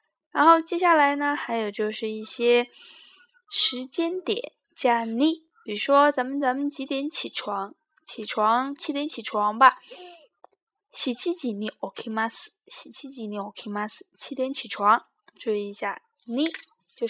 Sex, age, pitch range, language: female, 10-29, 230-315 Hz, Chinese